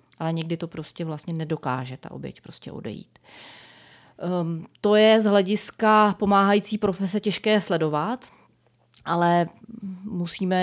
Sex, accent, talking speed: female, native, 115 wpm